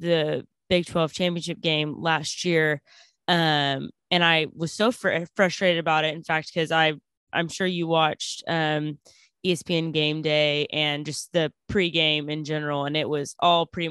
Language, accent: English, American